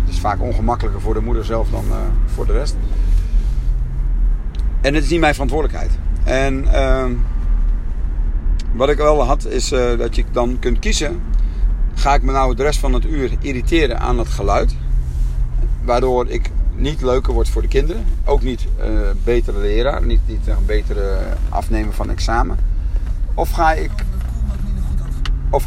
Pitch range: 80-120 Hz